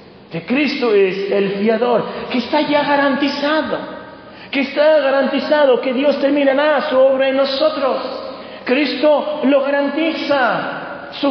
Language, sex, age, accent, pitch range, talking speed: Spanish, male, 40-59, Argentinian, 240-295 Hz, 120 wpm